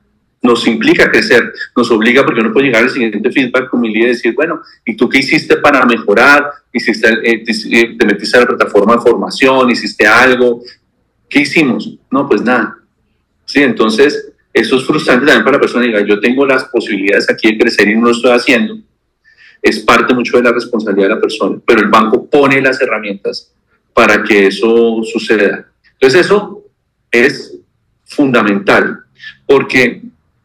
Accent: Colombian